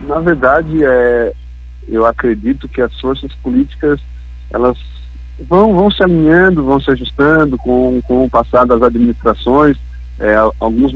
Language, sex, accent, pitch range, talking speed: Portuguese, male, Brazilian, 110-130 Hz, 135 wpm